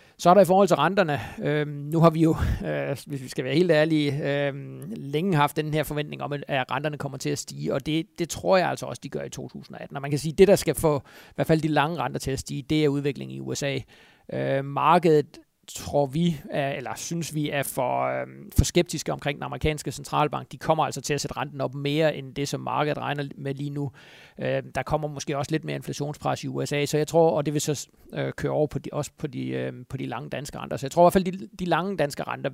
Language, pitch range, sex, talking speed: Danish, 135-155 Hz, male, 250 wpm